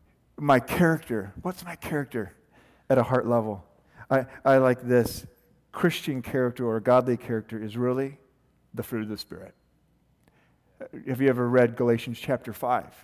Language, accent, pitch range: English, American, 125-175 Hz